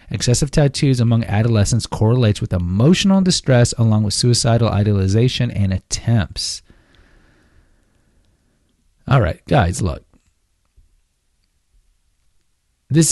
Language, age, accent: English, 30-49, American